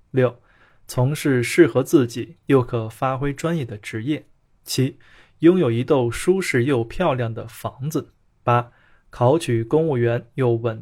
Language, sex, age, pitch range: Chinese, male, 20-39, 115-145 Hz